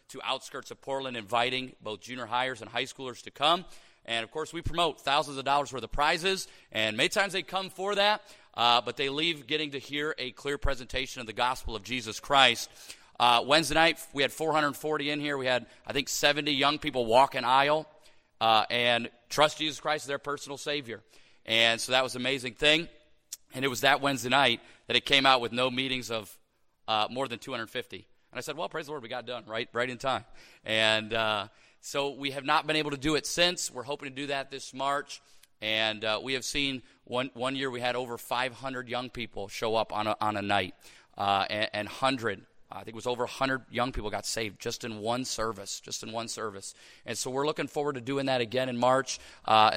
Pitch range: 115-145 Hz